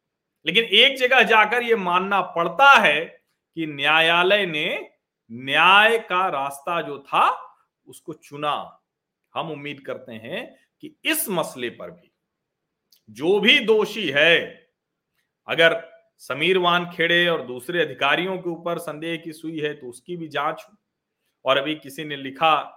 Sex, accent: male, native